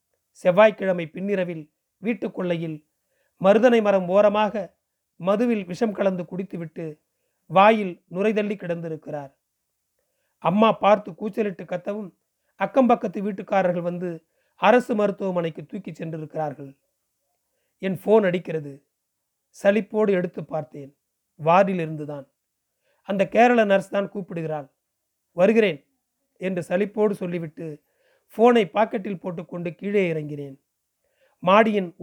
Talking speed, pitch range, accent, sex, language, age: 90 wpm, 170-215 Hz, native, male, Tamil, 40-59